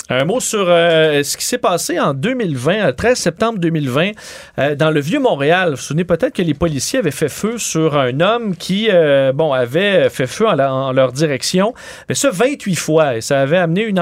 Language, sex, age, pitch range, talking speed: French, male, 40-59, 150-190 Hz, 225 wpm